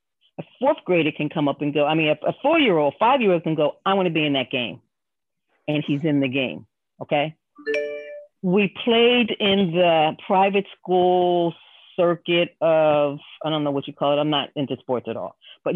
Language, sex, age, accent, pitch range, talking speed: English, female, 40-59, American, 160-200 Hz, 190 wpm